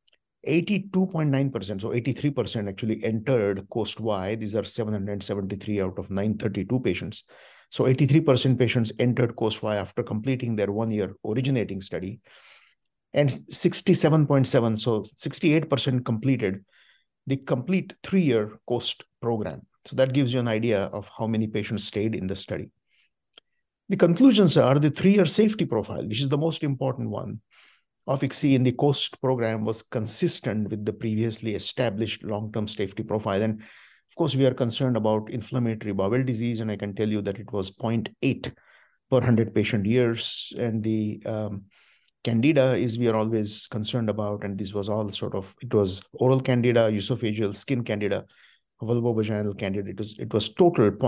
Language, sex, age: English, male, 50-69